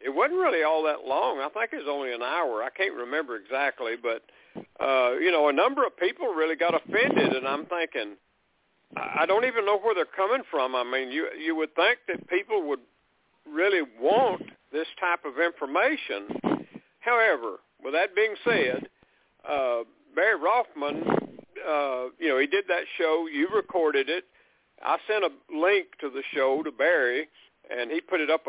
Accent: American